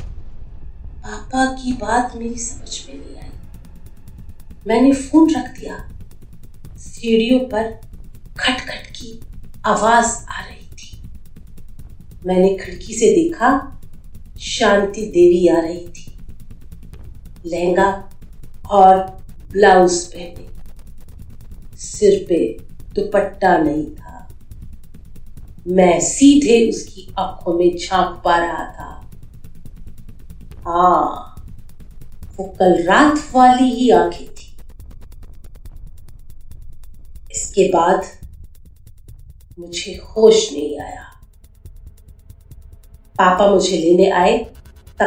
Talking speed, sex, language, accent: 90 wpm, female, Hindi, native